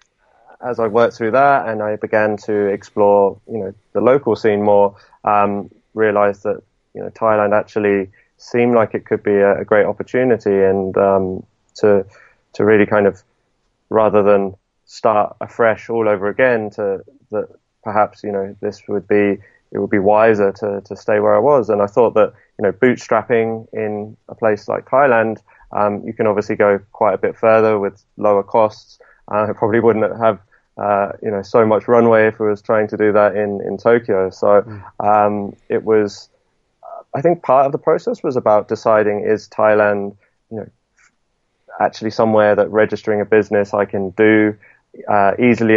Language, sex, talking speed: English, male, 180 wpm